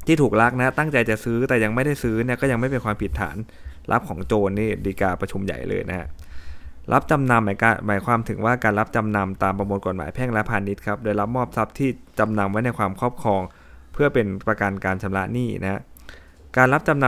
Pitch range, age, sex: 95-120 Hz, 20-39, male